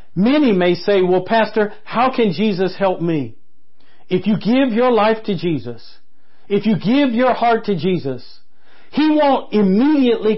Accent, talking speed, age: American, 155 wpm, 50-69